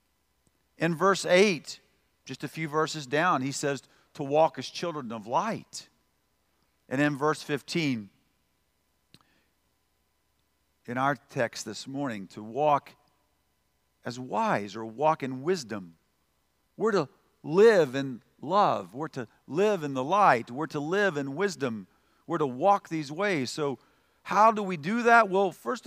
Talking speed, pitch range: 145 wpm, 140-215 Hz